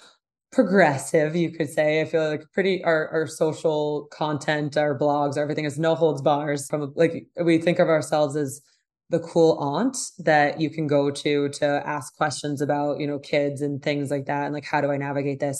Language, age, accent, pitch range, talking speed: English, 20-39, American, 145-165 Hz, 200 wpm